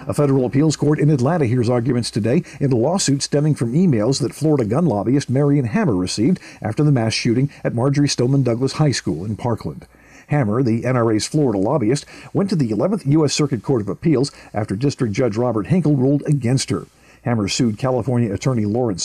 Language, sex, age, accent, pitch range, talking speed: English, male, 50-69, American, 115-150 Hz, 190 wpm